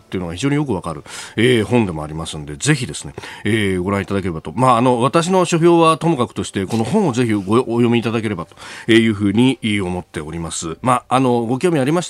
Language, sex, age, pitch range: Japanese, male, 40-59, 100-145 Hz